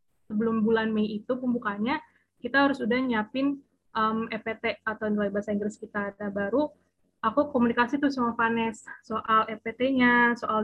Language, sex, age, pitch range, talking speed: Indonesian, female, 20-39, 215-240 Hz, 145 wpm